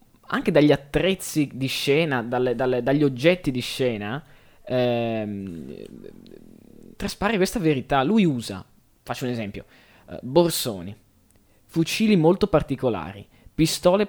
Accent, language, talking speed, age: native, Italian, 100 wpm, 20-39